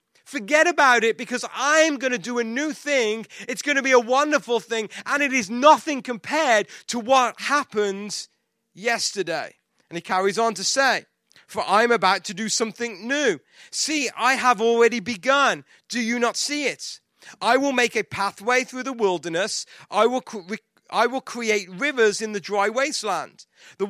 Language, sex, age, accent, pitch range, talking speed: English, male, 30-49, British, 210-270 Hz, 175 wpm